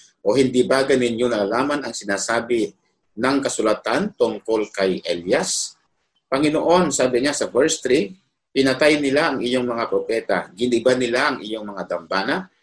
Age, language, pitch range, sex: 50-69, Filipino, 105-145 Hz, male